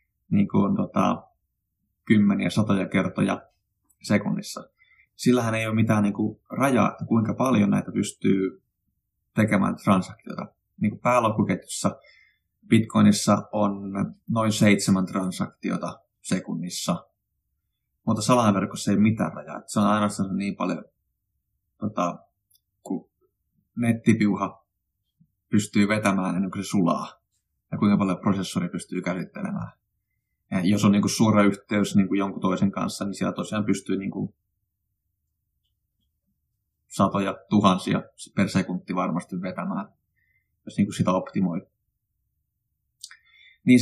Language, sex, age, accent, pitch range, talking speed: Finnish, male, 20-39, native, 95-110 Hz, 115 wpm